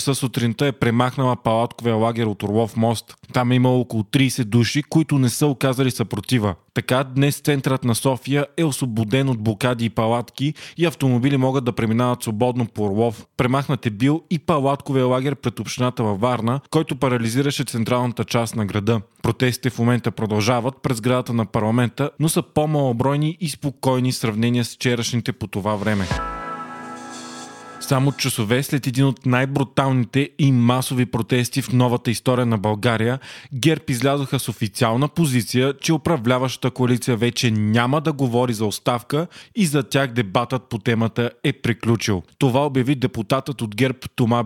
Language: Bulgarian